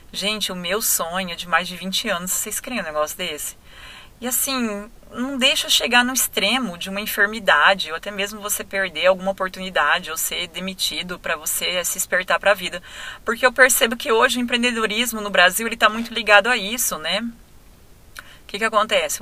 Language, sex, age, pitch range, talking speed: Portuguese, female, 30-49, 180-225 Hz, 185 wpm